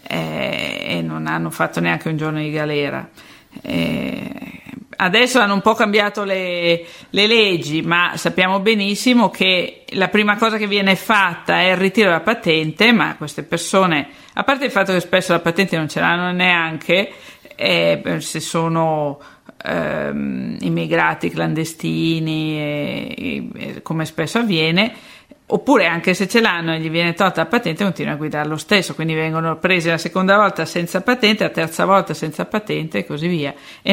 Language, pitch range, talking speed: Italian, 160-200 Hz, 165 wpm